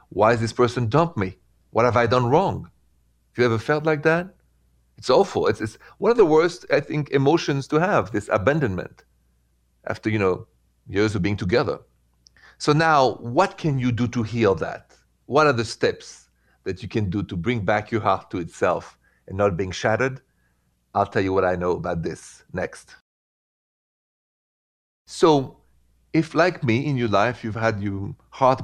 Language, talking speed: English, 180 wpm